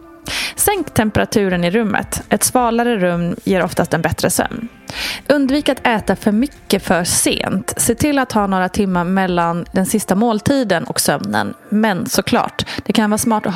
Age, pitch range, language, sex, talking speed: 20-39, 190-265 Hz, Swedish, female, 170 wpm